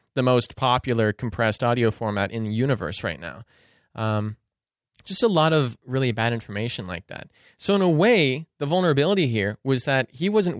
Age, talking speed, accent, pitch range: 20-39, 180 wpm, American, 105-140 Hz